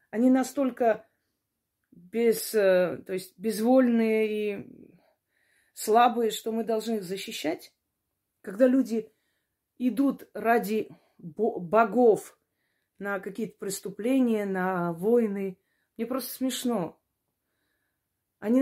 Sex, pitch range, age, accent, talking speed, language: female, 215-285 Hz, 30-49, native, 85 wpm, Russian